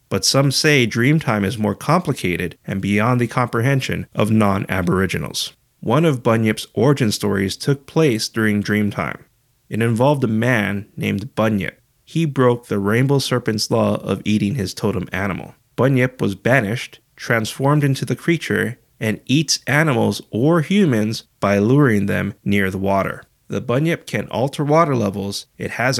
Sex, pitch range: male, 105-145 Hz